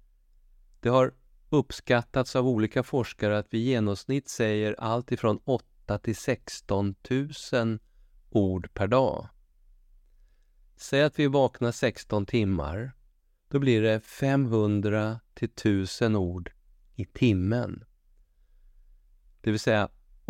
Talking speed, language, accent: 105 wpm, Swedish, native